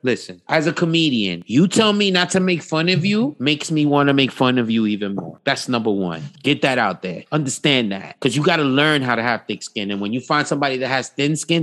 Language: English